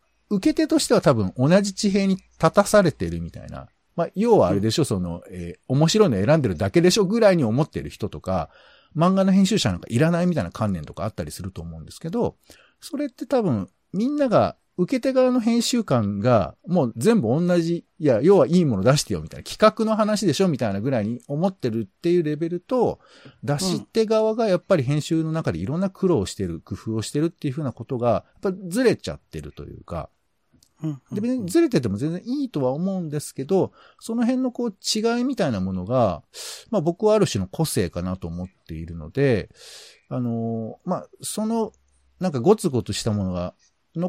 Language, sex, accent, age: Japanese, male, native, 50-69